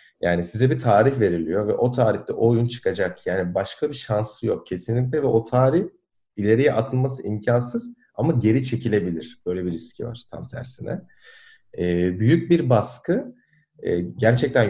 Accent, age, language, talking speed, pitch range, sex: native, 40-59, Turkish, 150 wpm, 100-130 Hz, male